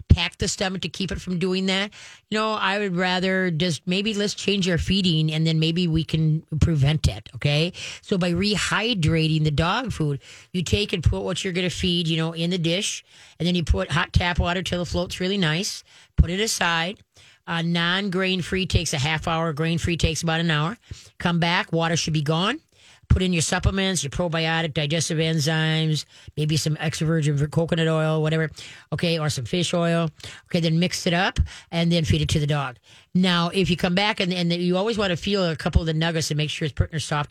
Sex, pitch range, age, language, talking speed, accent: female, 155-180 Hz, 30-49, English, 225 wpm, American